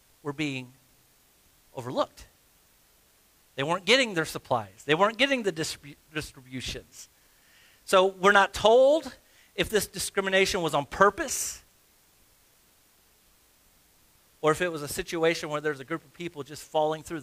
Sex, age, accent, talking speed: male, 40-59, American, 130 wpm